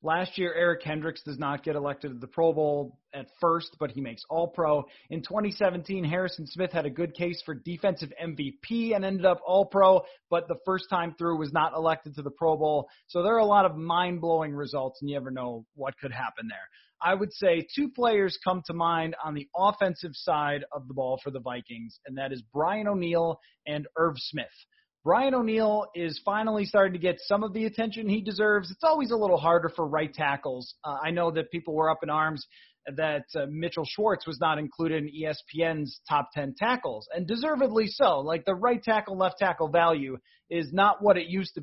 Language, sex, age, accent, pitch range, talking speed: English, male, 30-49, American, 150-195 Hz, 210 wpm